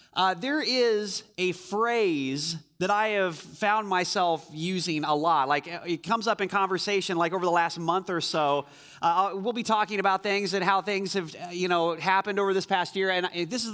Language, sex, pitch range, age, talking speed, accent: English, male, 175-215 Hz, 30-49, 200 wpm, American